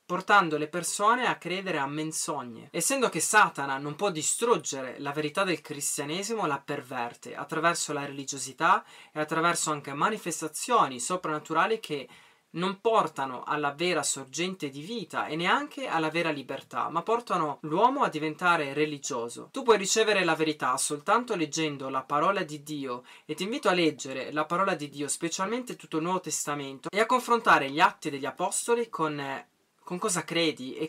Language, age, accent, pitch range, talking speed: Italian, 20-39, native, 150-190 Hz, 160 wpm